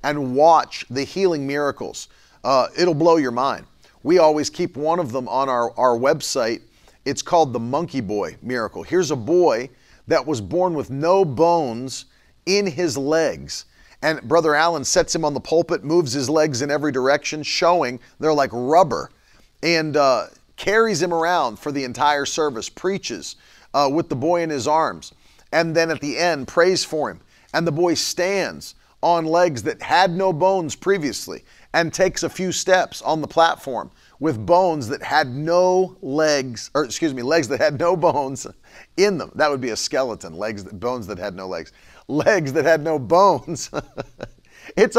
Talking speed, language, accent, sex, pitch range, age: 175 wpm, English, American, male, 145-175 Hz, 40-59